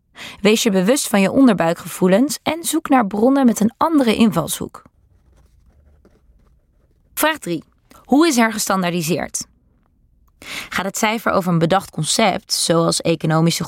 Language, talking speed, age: Dutch, 125 wpm, 20-39